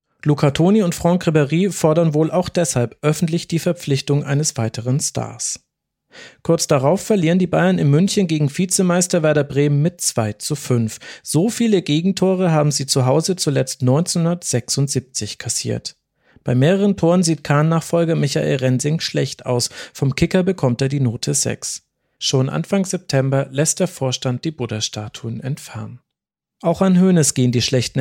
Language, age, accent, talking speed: German, 40-59, German, 155 wpm